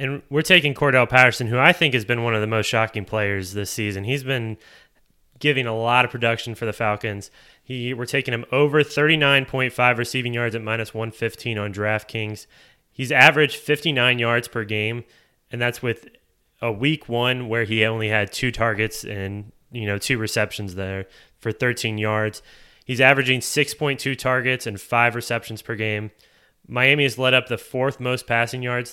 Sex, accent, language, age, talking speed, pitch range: male, American, English, 20-39, 180 wpm, 110-130 Hz